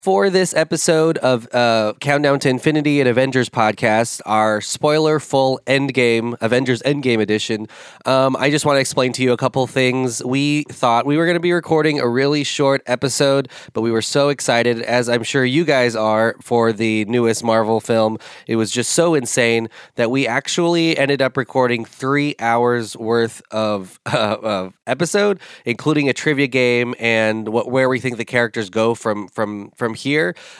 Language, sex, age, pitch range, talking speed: English, male, 20-39, 115-145 Hz, 180 wpm